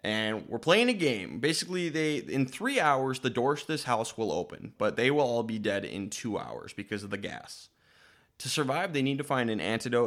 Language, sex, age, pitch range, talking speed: English, male, 20-39, 110-145 Hz, 225 wpm